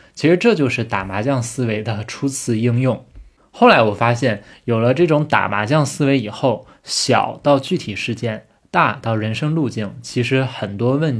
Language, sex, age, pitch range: Chinese, male, 20-39, 110-140 Hz